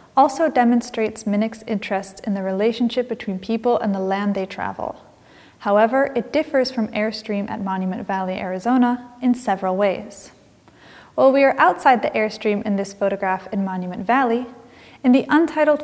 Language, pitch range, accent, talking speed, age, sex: English, 200-250 Hz, American, 155 wpm, 30-49, female